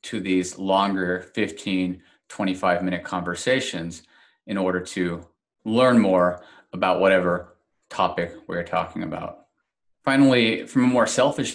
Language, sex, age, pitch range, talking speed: English, male, 30-49, 90-105 Hz, 115 wpm